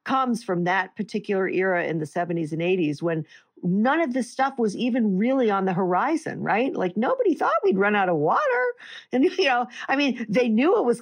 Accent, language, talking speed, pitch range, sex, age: American, English, 210 wpm, 180-235 Hz, female, 50-69